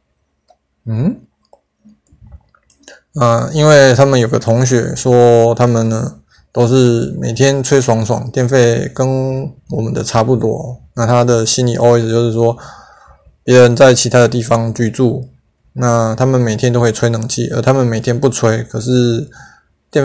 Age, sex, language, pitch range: 20-39, male, Chinese, 115-130 Hz